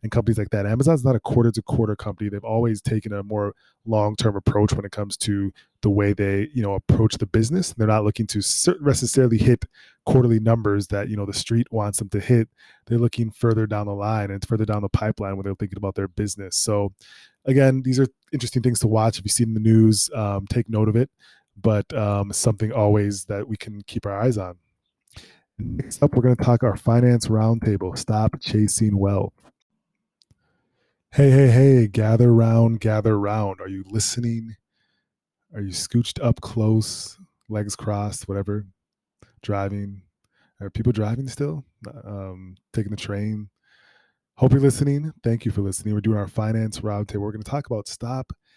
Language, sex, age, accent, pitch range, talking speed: English, male, 20-39, American, 100-120 Hz, 185 wpm